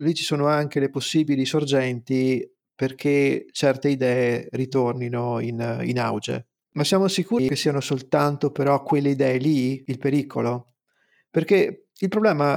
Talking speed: 140 wpm